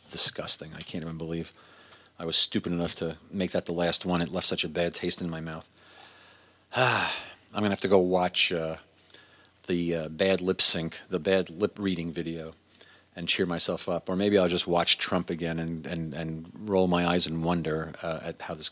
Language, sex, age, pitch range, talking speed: English, male, 40-59, 80-100 Hz, 210 wpm